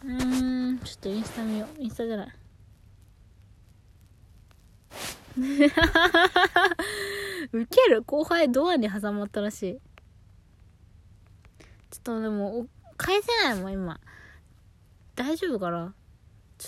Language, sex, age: Japanese, female, 20-39